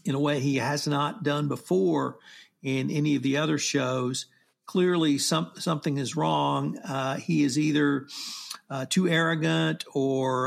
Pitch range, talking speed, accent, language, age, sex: 135-160 Hz, 155 wpm, American, English, 50-69, male